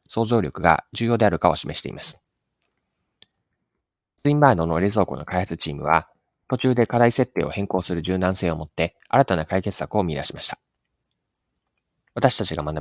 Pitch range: 80-115 Hz